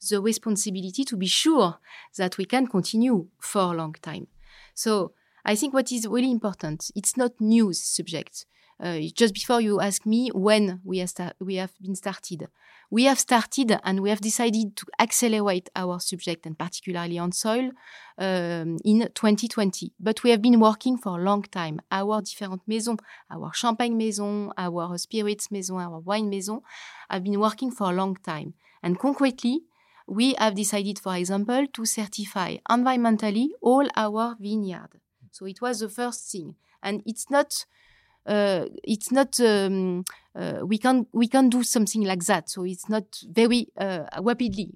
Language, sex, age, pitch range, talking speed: English, female, 30-49, 185-230 Hz, 165 wpm